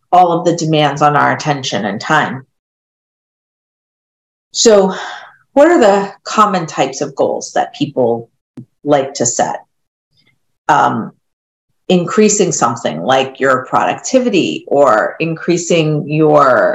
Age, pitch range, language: 40-59, 150-200 Hz, English